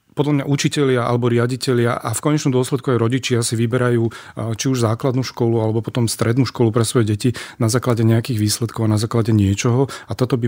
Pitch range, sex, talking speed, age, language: 110-125 Hz, male, 200 wpm, 40-59, Slovak